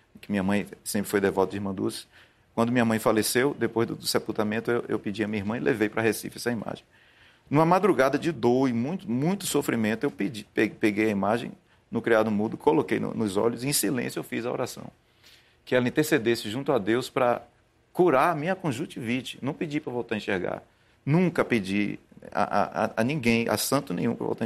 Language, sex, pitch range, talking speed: Portuguese, male, 110-145 Hz, 210 wpm